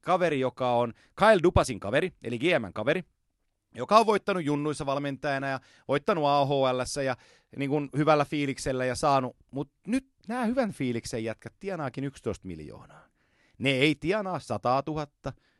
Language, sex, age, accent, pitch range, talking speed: Finnish, male, 30-49, native, 110-150 Hz, 145 wpm